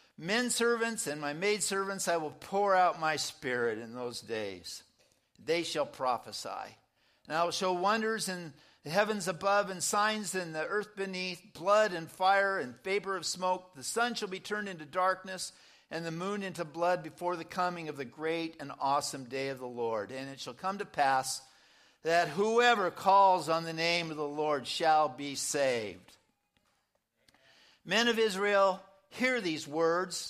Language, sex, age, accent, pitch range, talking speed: English, male, 50-69, American, 160-205 Hz, 175 wpm